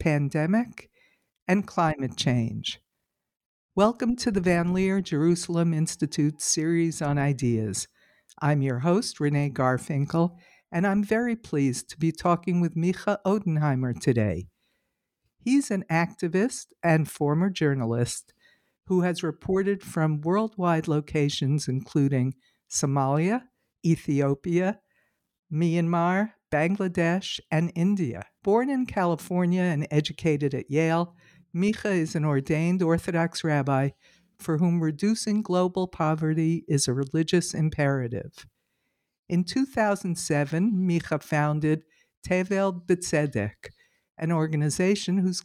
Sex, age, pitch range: female, 60-79, 145-185 Hz